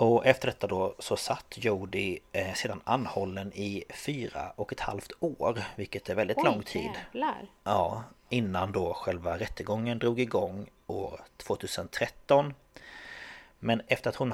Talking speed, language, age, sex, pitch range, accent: 140 wpm, Swedish, 30-49, male, 105-125 Hz, native